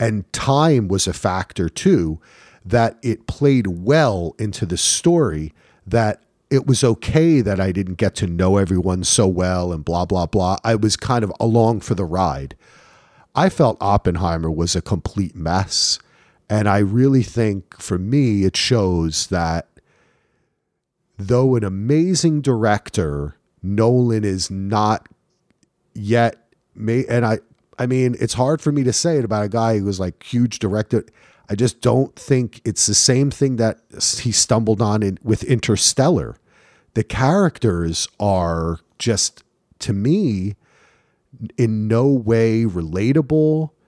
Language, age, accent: English, 40-59, American